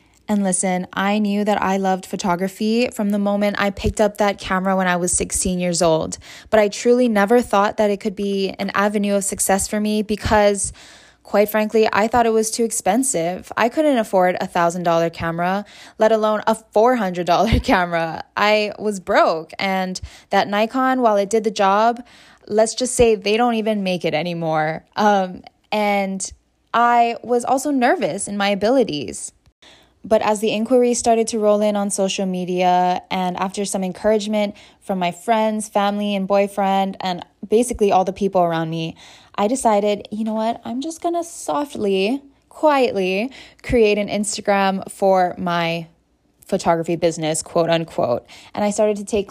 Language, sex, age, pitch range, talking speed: English, female, 10-29, 190-225 Hz, 170 wpm